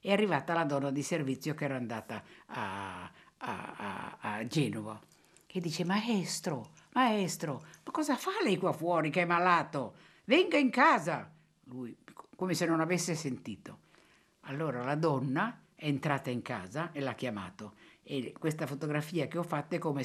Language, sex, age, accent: Italian, female, 50-69, native